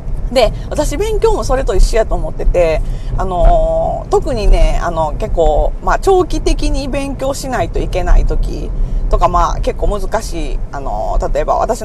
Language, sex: Japanese, female